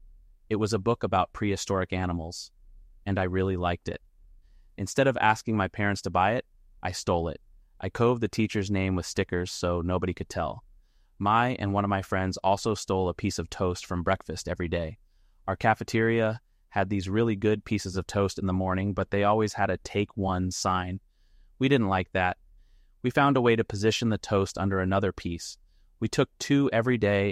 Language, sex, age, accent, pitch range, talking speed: English, male, 30-49, American, 90-100 Hz, 200 wpm